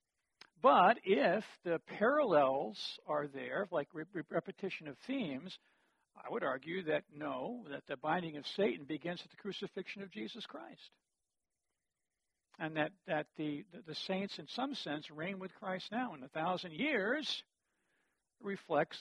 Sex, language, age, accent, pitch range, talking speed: male, English, 60-79, American, 150-195 Hz, 150 wpm